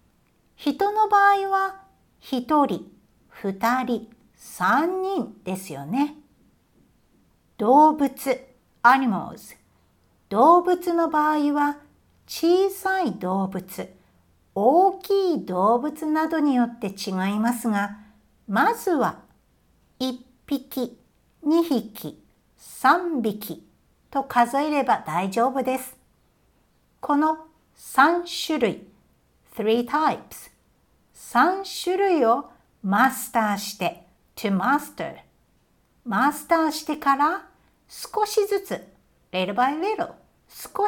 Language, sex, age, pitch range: Japanese, female, 60-79, 225-340 Hz